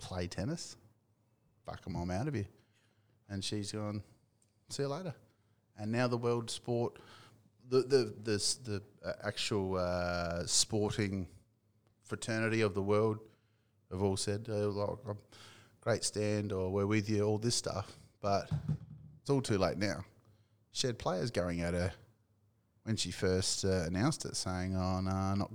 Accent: Australian